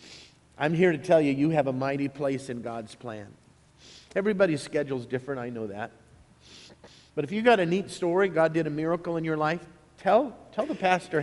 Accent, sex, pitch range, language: American, male, 130-175 Hz, English